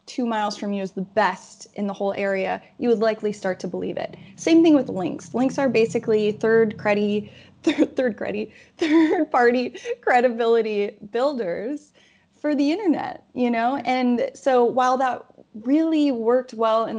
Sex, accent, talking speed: female, American, 165 wpm